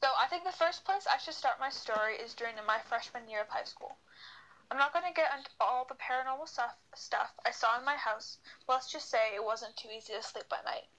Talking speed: 255 wpm